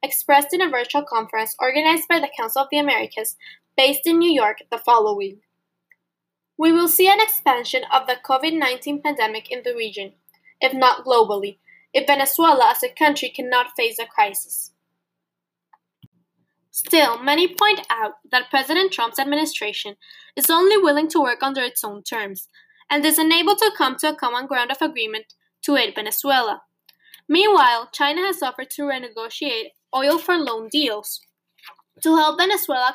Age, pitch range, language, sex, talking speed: 10-29, 230-320 Hz, English, female, 155 wpm